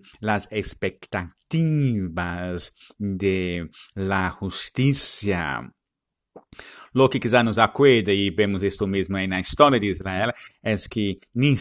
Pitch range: 90-105 Hz